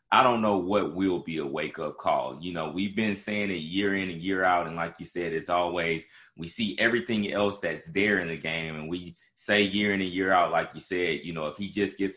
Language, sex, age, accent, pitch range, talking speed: English, male, 30-49, American, 90-115 Hz, 255 wpm